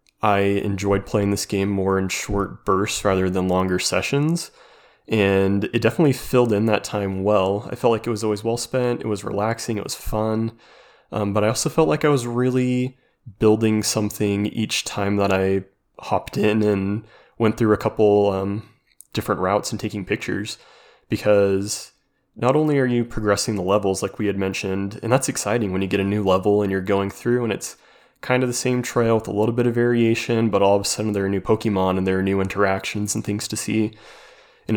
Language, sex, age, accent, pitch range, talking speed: English, male, 20-39, American, 100-120 Hz, 205 wpm